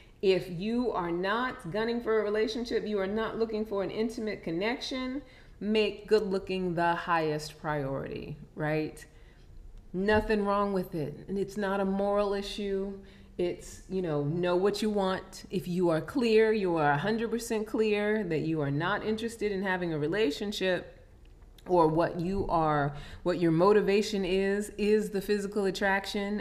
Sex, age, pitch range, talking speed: female, 30-49, 165-210 Hz, 155 wpm